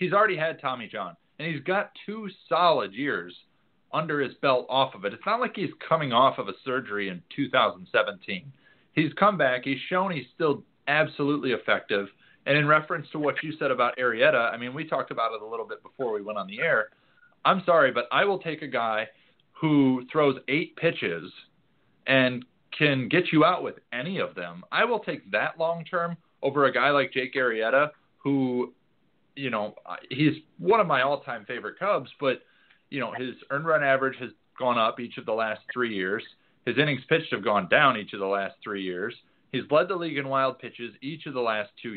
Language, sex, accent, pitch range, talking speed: English, male, American, 125-160 Hz, 205 wpm